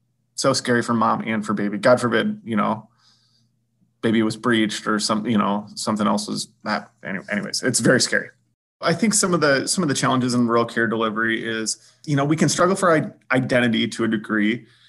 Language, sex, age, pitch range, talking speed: English, male, 30-49, 110-125 Hz, 200 wpm